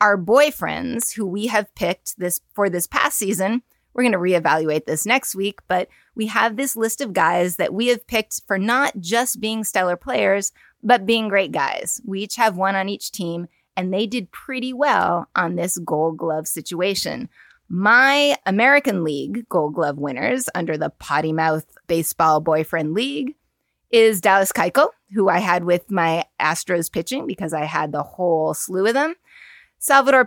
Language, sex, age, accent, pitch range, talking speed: English, female, 20-39, American, 170-225 Hz, 175 wpm